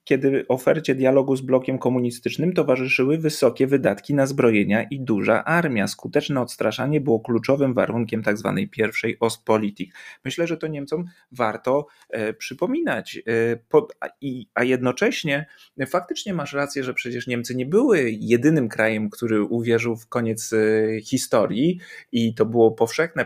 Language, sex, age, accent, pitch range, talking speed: Polish, male, 30-49, native, 115-140 Hz, 130 wpm